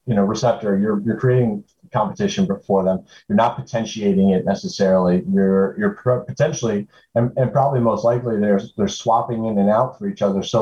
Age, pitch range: 30-49, 110-135 Hz